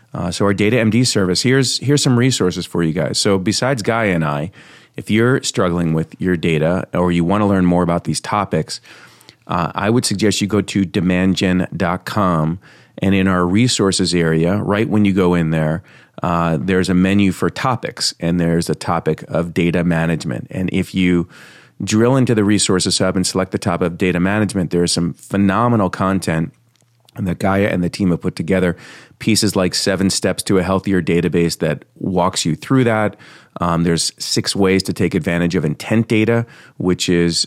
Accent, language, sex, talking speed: American, English, male, 190 wpm